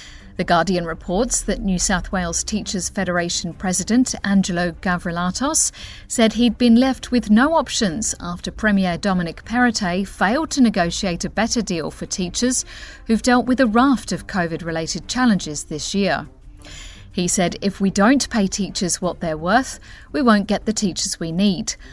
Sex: female